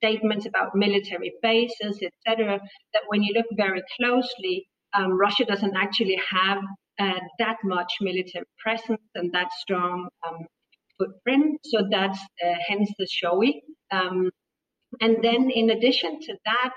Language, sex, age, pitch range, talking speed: English, female, 40-59, 185-240 Hz, 145 wpm